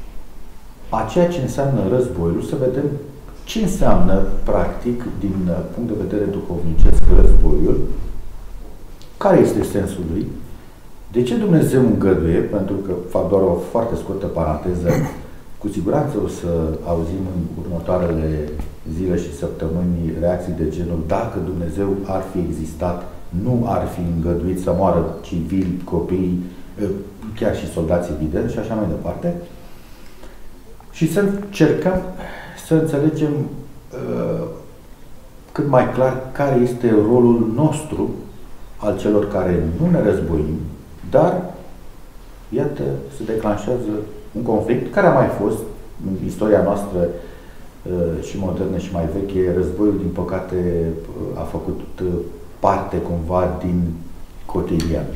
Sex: male